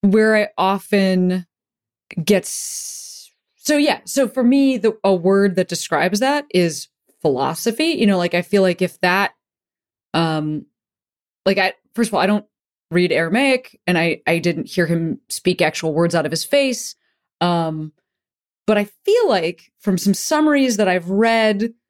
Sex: female